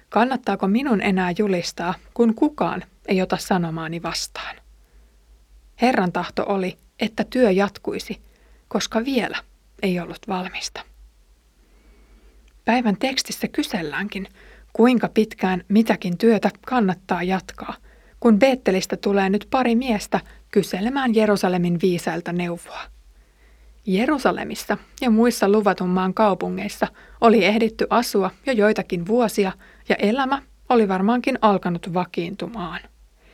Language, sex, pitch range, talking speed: Finnish, female, 185-225 Hz, 105 wpm